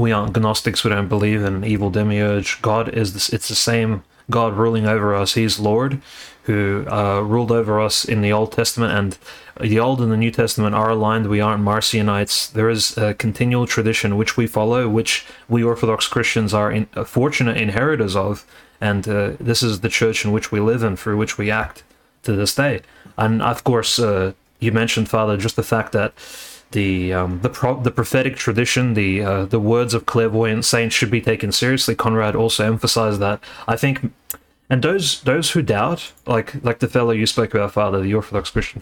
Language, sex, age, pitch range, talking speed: English, male, 30-49, 105-125 Hz, 195 wpm